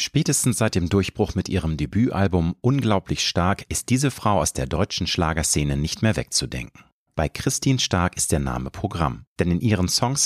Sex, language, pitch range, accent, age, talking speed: male, German, 80-110 Hz, German, 40-59, 175 wpm